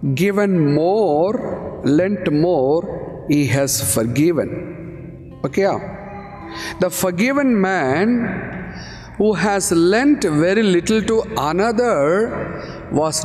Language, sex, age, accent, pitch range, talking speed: Tamil, male, 50-69, native, 140-185 Hz, 85 wpm